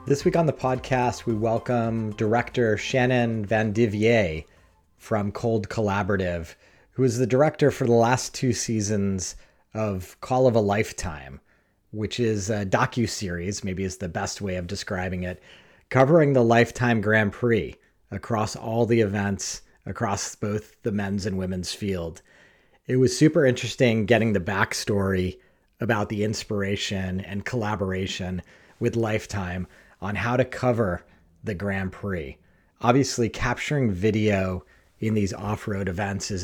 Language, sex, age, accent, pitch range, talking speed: English, male, 40-59, American, 95-120 Hz, 140 wpm